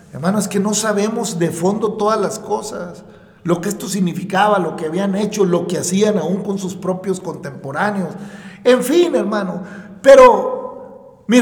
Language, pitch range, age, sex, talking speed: Spanish, 195-245 Hz, 50-69, male, 165 wpm